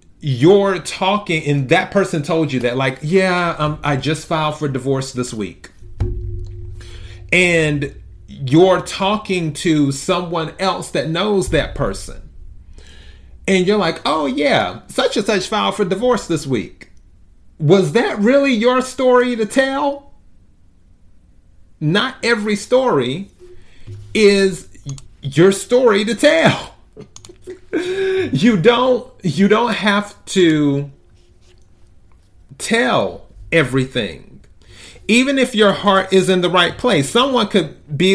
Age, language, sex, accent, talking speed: 40-59, English, male, American, 120 wpm